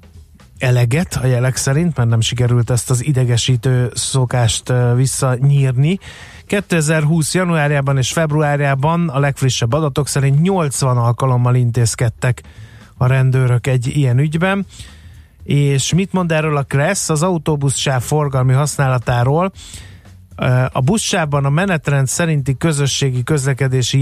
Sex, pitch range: male, 120-150 Hz